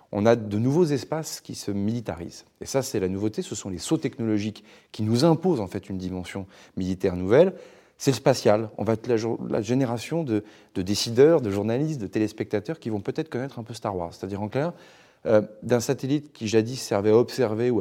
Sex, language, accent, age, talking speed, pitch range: male, French, French, 30-49, 210 wpm, 95-120 Hz